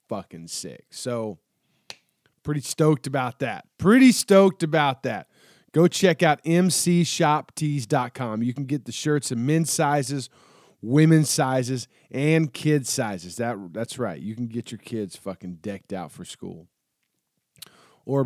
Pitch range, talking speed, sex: 120-155 Hz, 140 wpm, male